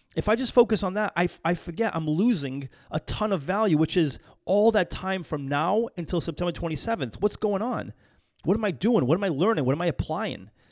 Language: English